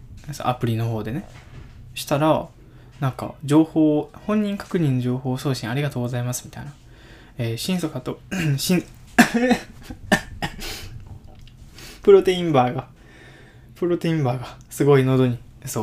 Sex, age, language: male, 20-39, Japanese